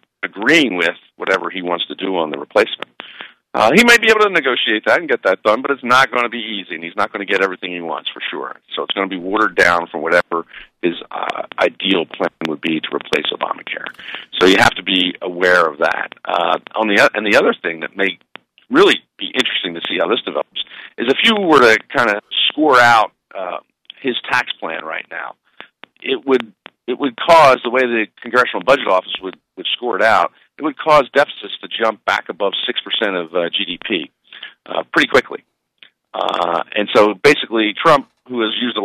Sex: male